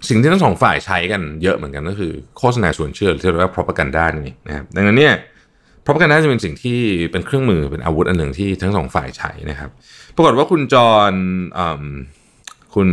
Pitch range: 85-115 Hz